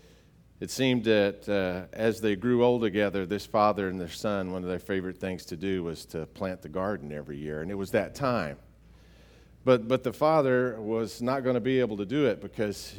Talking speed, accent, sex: 215 wpm, American, male